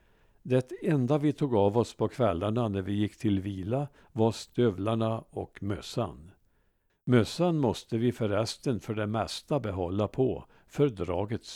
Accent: Norwegian